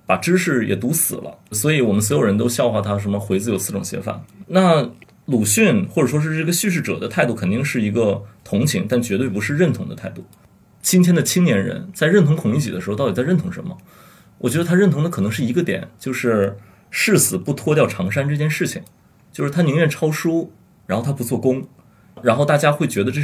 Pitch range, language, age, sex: 110-170 Hz, Chinese, 30-49, male